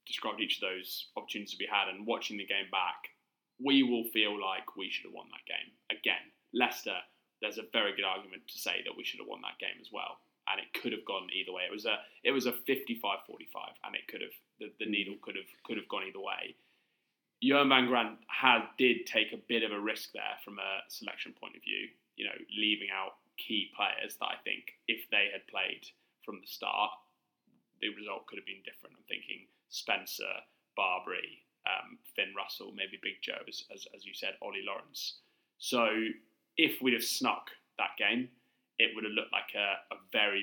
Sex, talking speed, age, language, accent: male, 210 wpm, 20-39, English, British